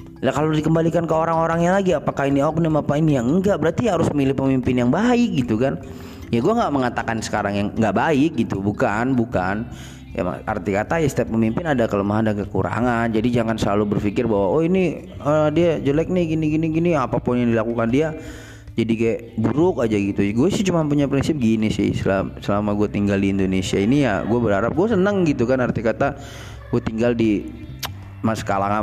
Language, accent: Indonesian, native